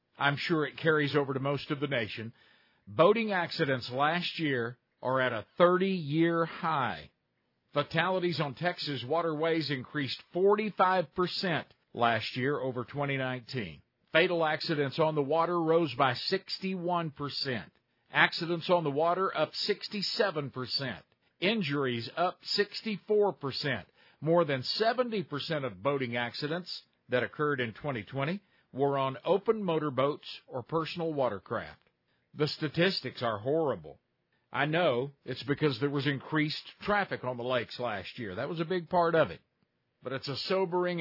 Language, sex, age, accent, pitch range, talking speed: English, male, 50-69, American, 125-165 Hz, 135 wpm